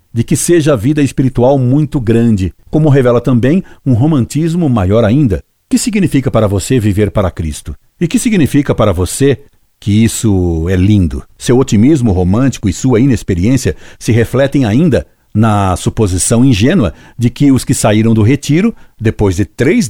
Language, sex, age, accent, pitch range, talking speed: Portuguese, male, 60-79, Brazilian, 95-130 Hz, 165 wpm